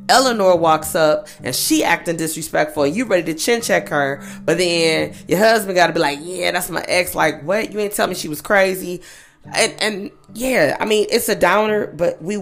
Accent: American